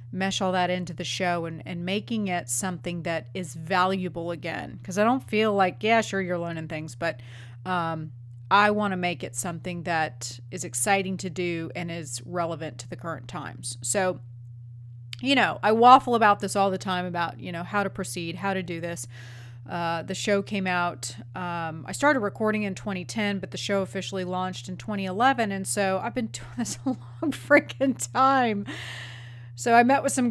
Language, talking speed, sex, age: English, 195 wpm, female, 30-49